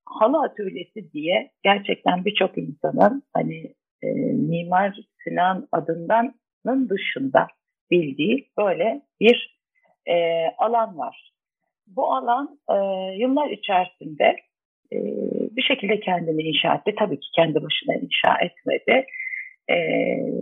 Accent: native